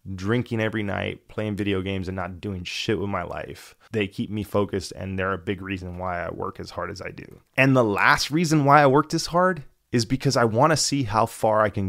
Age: 20-39